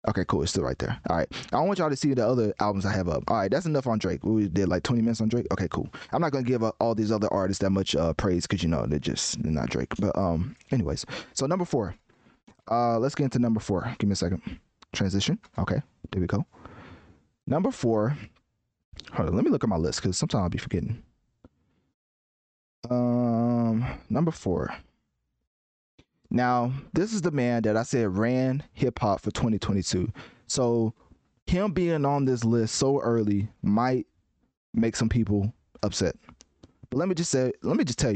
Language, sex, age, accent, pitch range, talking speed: English, male, 20-39, American, 100-125 Hz, 200 wpm